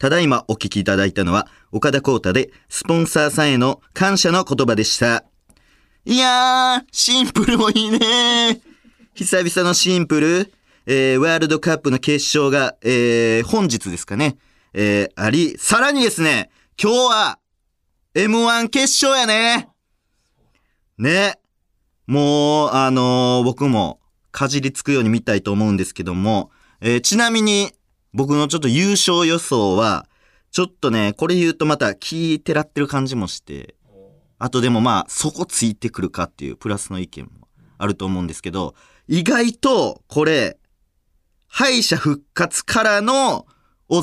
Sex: male